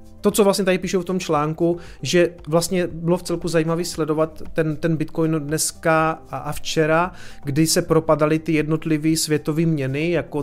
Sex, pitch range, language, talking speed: male, 140-165 Hz, Czech, 165 wpm